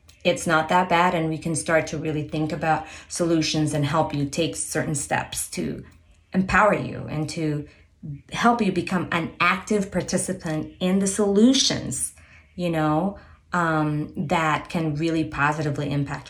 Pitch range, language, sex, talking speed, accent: 145-205 Hz, English, female, 150 wpm, American